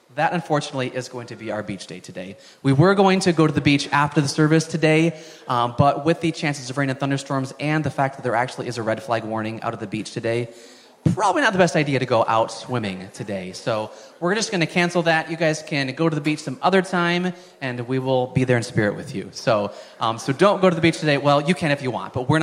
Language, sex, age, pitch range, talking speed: English, male, 30-49, 125-160 Hz, 270 wpm